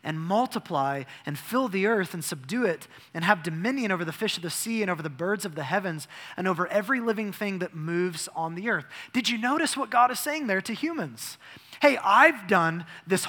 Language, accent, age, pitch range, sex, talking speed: English, American, 20-39, 160-210 Hz, male, 220 wpm